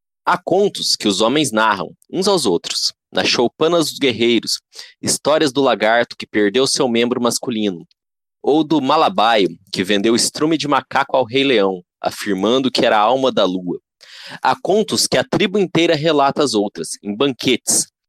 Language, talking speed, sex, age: Portuguese, 165 wpm, male, 20-39